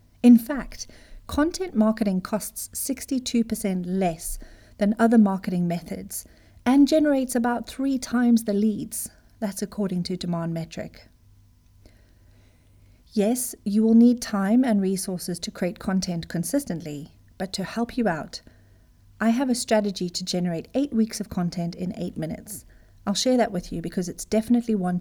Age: 40-59